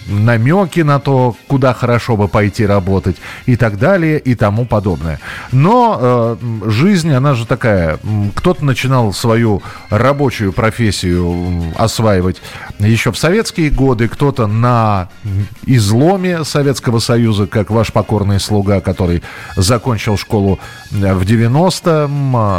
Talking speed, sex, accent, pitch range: 115 wpm, male, native, 105-135 Hz